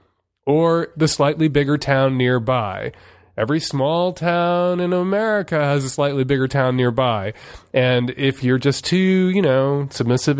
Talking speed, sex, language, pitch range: 145 wpm, male, English, 105-155 Hz